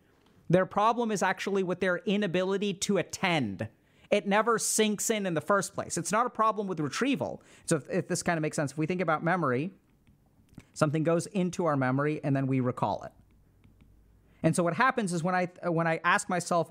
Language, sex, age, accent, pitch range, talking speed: English, male, 40-59, American, 150-200 Hz, 200 wpm